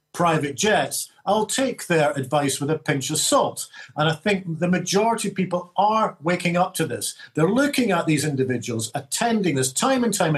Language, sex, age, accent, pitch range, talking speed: English, male, 50-69, British, 145-210 Hz, 190 wpm